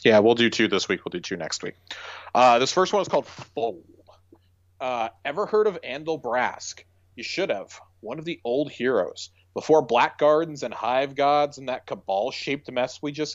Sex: male